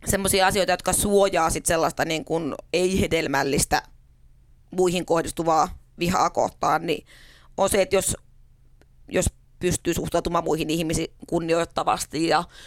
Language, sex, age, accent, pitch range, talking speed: Finnish, female, 30-49, native, 155-175 Hz, 115 wpm